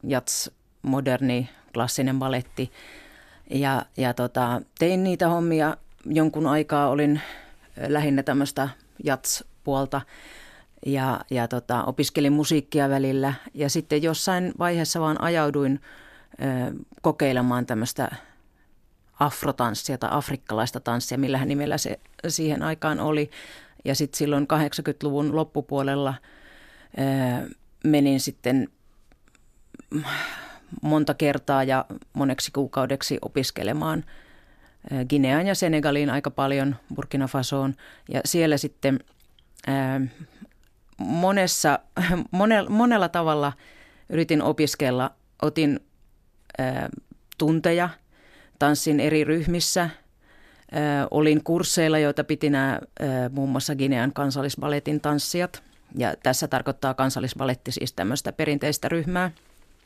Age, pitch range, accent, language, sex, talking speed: 30-49, 135-155 Hz, native, Finnish, female, 95 wpm